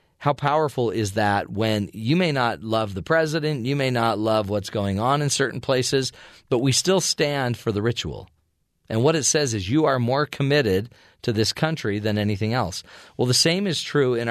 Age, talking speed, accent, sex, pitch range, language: 40-59, 205 wpm, American, male, 105-145 Hz, English